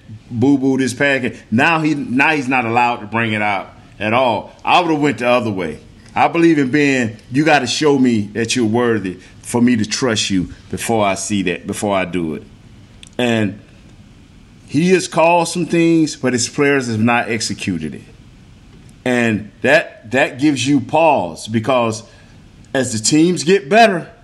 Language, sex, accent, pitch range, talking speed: English, male, American, 115-165 Hz, 180 wpm